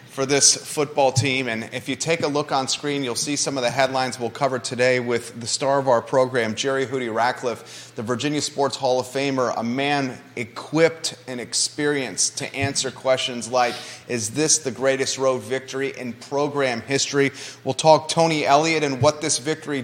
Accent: American